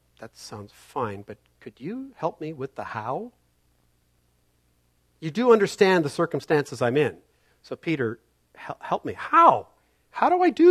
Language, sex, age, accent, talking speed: English, male, 50-69, American, 155 wpm